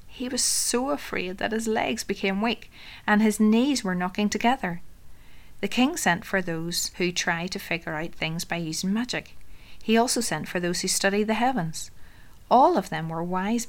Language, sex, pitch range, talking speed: English, female, 165-210 Hz, 190 wpm